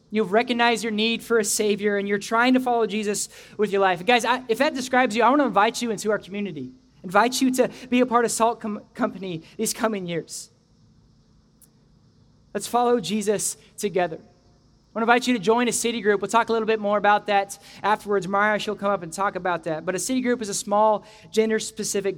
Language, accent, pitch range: English, American, 180-220 Hz